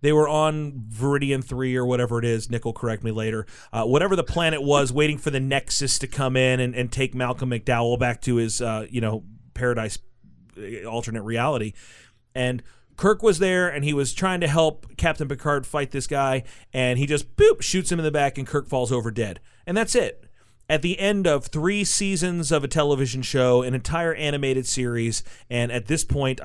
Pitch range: 120-150 Hz